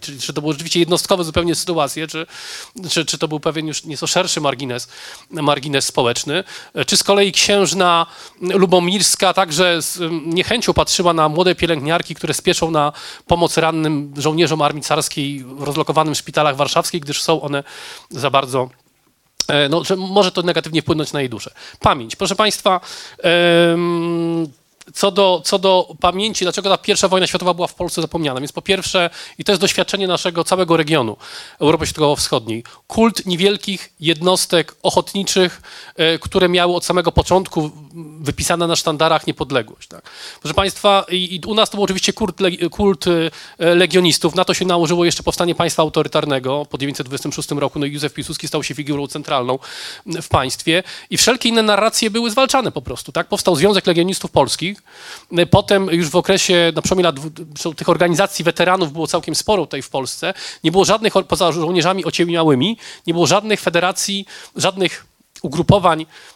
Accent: native